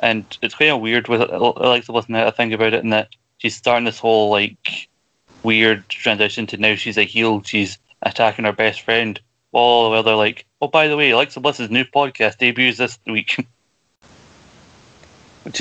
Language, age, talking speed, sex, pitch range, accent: English, 20-39, 185 wpm, male, 110-115 Hz, British